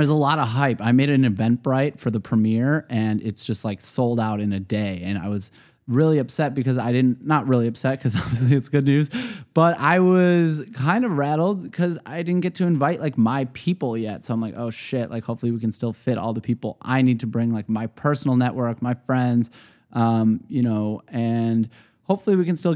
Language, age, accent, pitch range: English, 20-39, American, 115-145 Hz